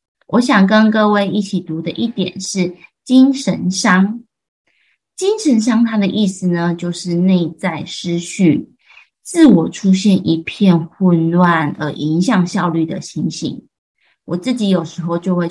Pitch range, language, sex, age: 175-215 Hz, Chinese, female, 20-39